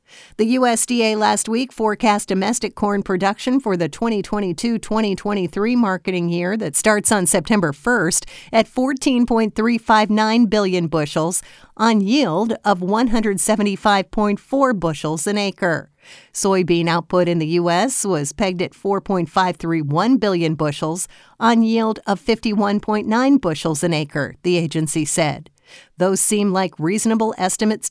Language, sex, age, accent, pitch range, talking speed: English, female, 50-69, American, 170-215 Hz, 120 wpm